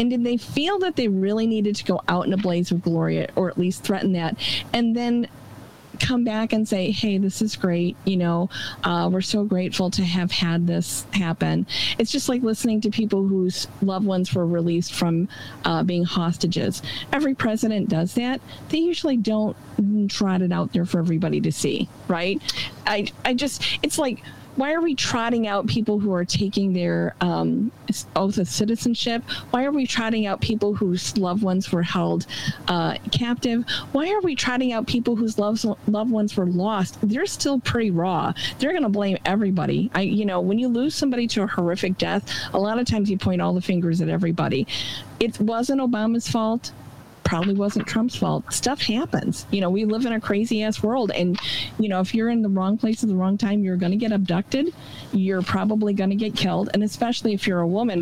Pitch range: 180-225 Hz